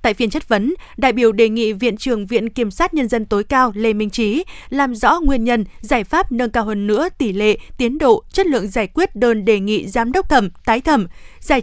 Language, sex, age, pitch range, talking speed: Vietnamese, female, 20-39, 220-275 Hz, 245 wpm